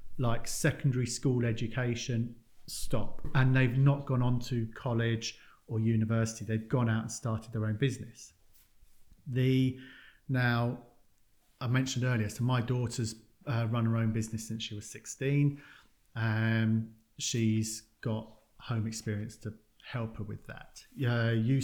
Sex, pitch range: male, 110-125 Hz